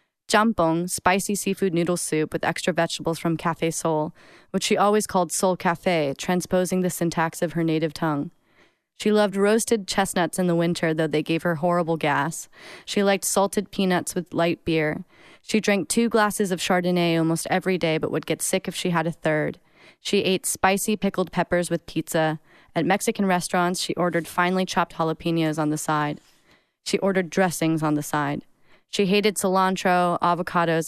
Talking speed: 175 wpm